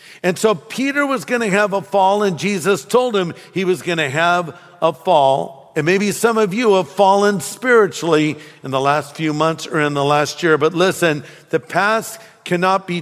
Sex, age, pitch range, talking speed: male, 50-69, 155-195 Hz, 195 wpm